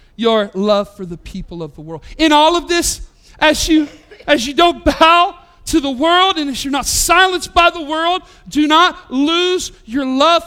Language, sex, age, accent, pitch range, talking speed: English, male, 50-69, American, 195-305 Hz, 195 wpm